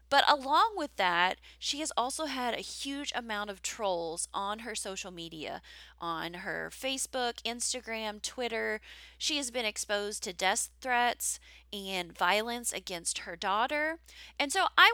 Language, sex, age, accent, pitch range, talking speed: English, female, 20-39, American, 190-255 Hz, 150 wpm